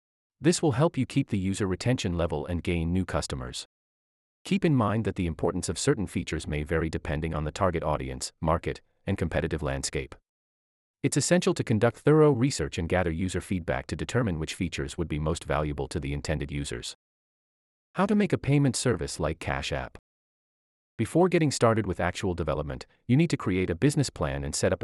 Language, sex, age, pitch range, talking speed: English, male, 30-49, 75-120 Hz, 195 wpm